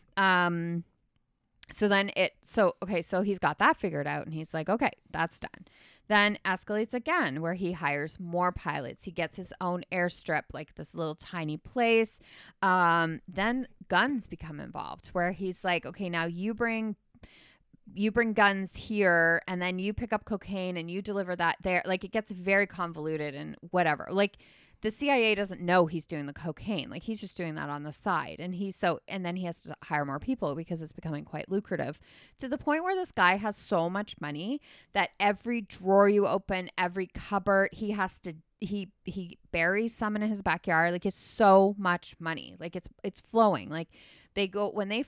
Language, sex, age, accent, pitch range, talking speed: English, female, 20-39, American, 170-205 Hz, 190 wpm